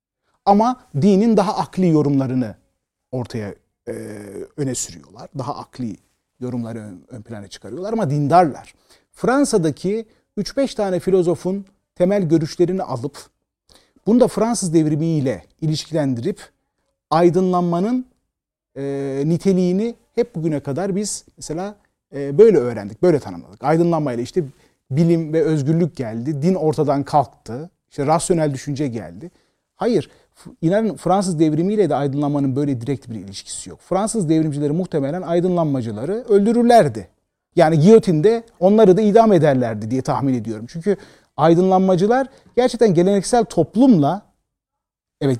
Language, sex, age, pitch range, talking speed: Turkish, male, 40-59, 140-195 Hz, 115 wpm